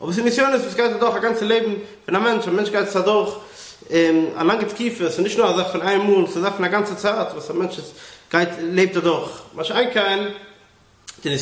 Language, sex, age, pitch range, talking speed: English, male, 30-49, 165-220 Hz, 210 wpm